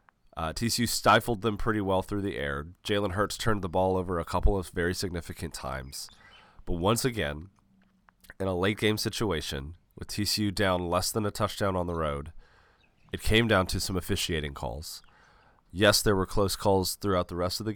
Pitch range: 80-100 Hz